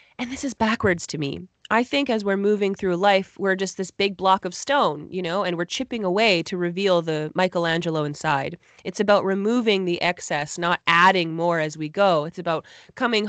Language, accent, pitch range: English, American, 175-210 Hz